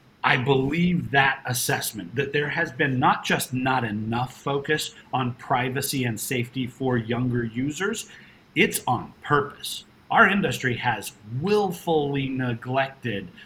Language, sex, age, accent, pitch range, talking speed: English, male, 40-59, American, 125-165 Hz, 125 wpm